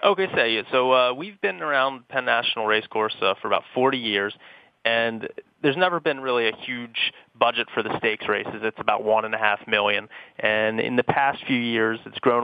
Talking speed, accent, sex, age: 185 wpm, American, male, 30-49